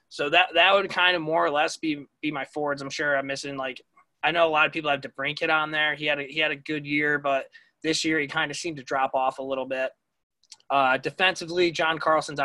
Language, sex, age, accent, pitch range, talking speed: English, male, 20-39, American, 135-160 Hz, 265 wpm